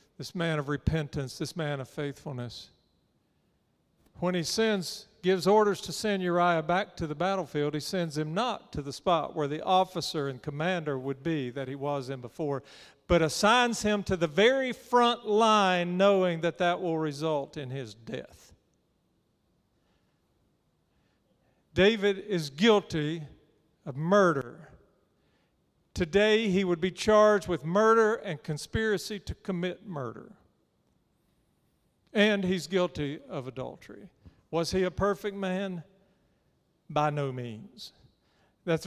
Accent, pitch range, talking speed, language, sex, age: American, 145-195 Hz, 135 wpm, English, male, 50-69